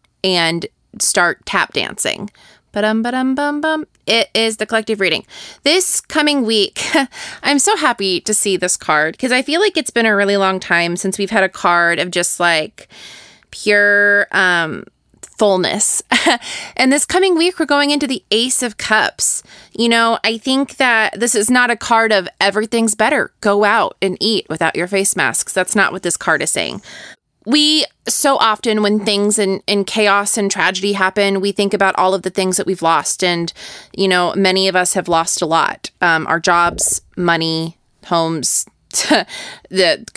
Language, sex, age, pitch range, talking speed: English, female, 20-39, 180-235 Hz, 180 wpm